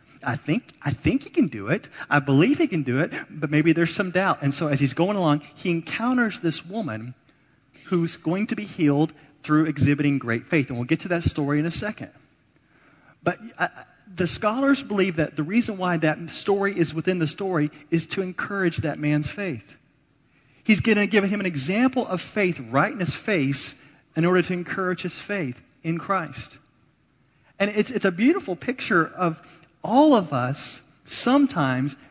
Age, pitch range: 40-59, 135-175 Hz